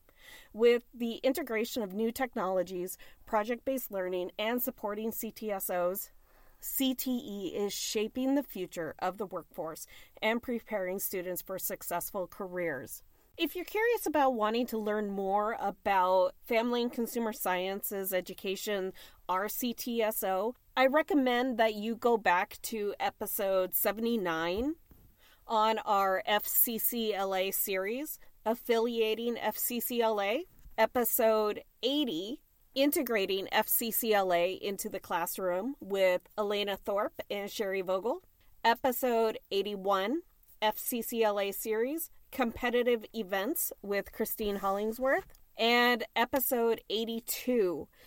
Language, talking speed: English, 100 wpm